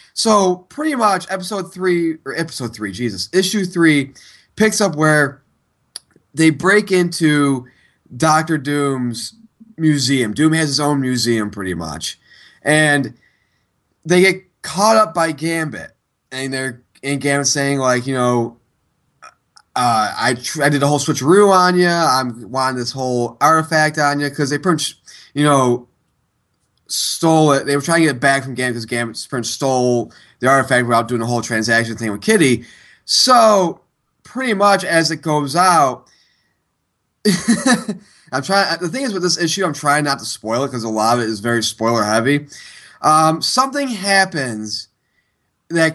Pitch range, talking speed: 125-175 Hz, 160 wpm